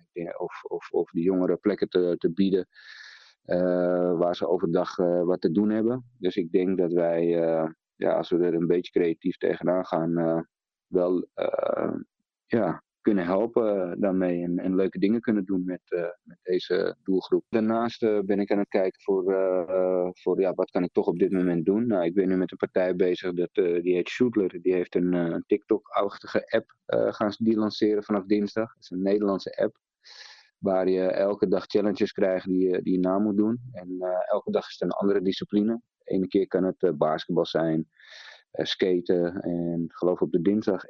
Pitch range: 90-105 Hz